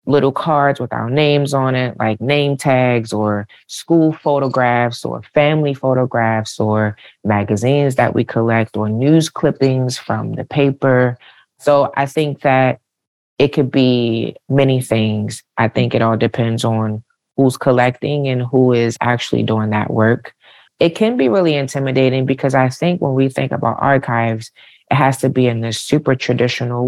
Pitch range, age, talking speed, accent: 115-145 Hz, 30-49, 160 wpm, American